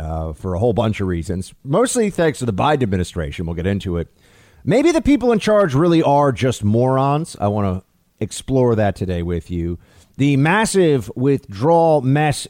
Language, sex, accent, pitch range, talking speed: English, male, American, 95-140 Hz, 185 wpm